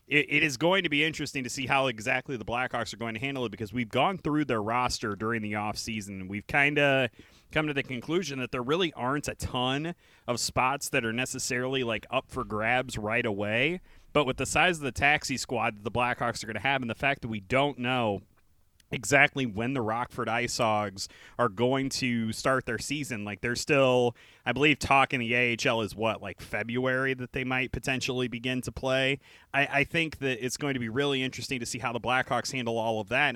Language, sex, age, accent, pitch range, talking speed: English, male, 30-49, American, 115-135 Hz, 220 wpm